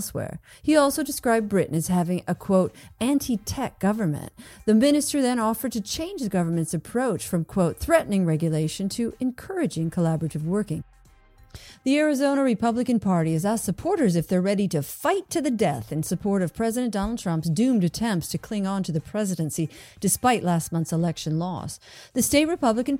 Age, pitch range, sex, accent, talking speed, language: 40-59, 165-245 Hz, female, American, 170 wpm, English